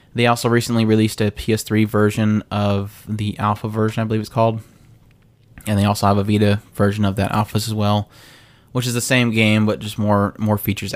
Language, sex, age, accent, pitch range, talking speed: English, male, 20-39, American, 105-120 Hz, 205 wpm